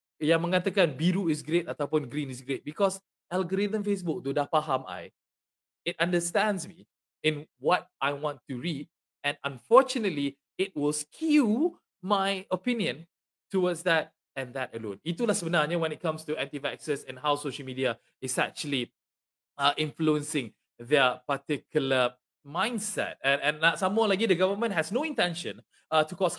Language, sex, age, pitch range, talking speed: English, male, 20-39, 140-195 Hz, 155 wpm